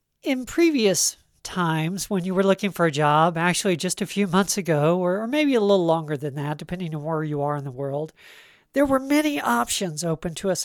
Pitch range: 160-215 Hz